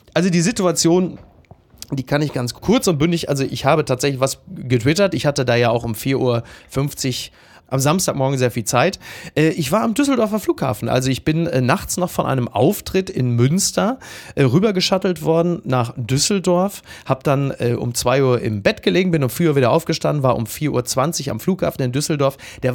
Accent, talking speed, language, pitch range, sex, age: German, 190 wpm, German, 130-175 Hz, male, 30-49